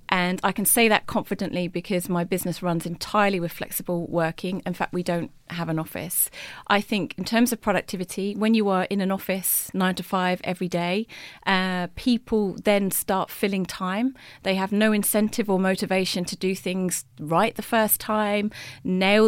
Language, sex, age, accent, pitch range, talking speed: English, female, 30-49, British, 180-210 Hz, 180 wpm